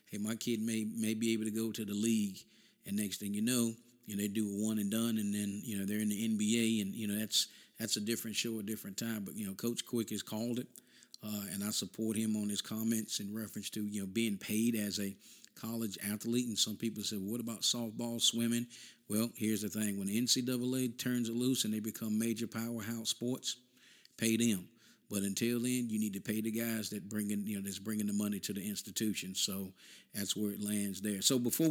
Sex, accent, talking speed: male, American, 240 wpm